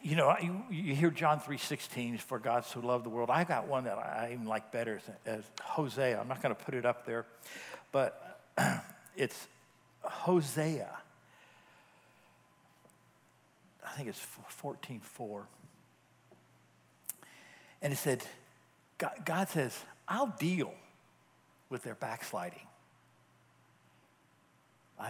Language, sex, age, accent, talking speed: English, male, 60-79, American, 125 wpm